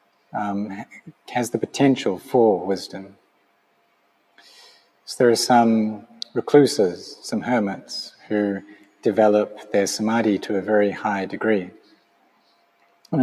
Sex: male